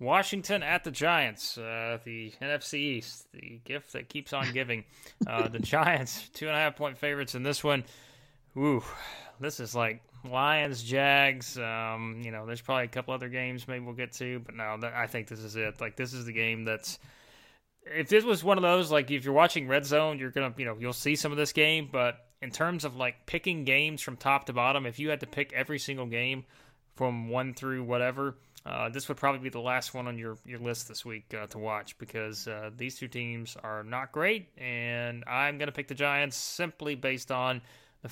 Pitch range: 120-145 Hz